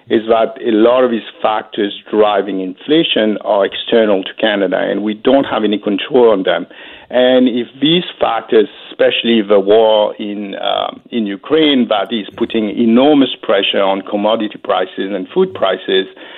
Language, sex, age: English, male, 60-79